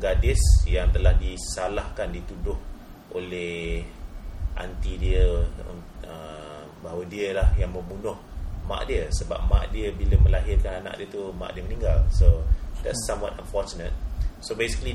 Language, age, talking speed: English, 30-49, 130 wpm